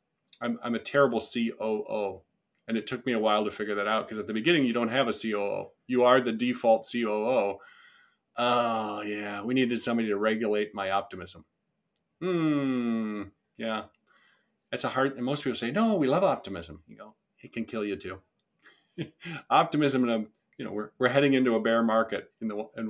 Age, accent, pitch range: 40-59, American, 105-130 Hz